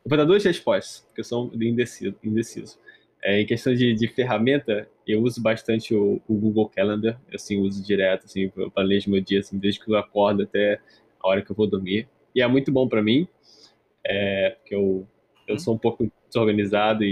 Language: Portuguese